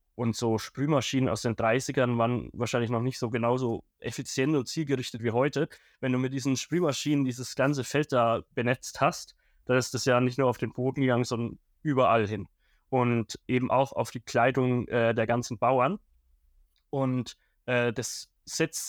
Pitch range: 120-135 Hz